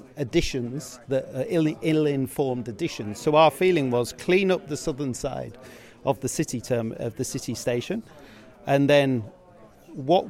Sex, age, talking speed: male, 40-59, 145 wpm